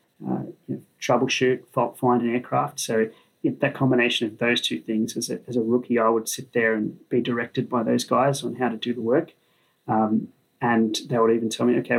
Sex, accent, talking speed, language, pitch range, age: male, Australian, 225 wpm, English, 115-125 Hz, 30-49